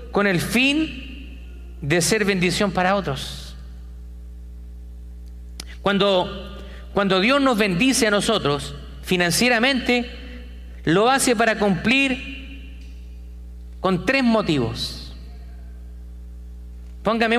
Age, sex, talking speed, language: 40-59, male, 85 wpm, Spanish